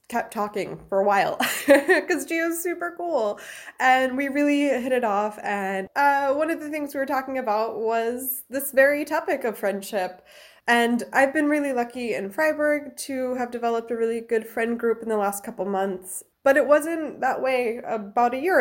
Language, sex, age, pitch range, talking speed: English, female, 20-39, 205-280 Hz, 190 wpm